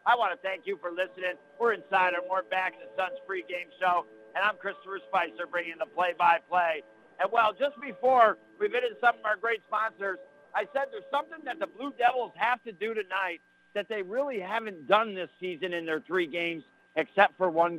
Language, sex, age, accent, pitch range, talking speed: English, male, 50-69, American, 170-225 Hz, 215 wpm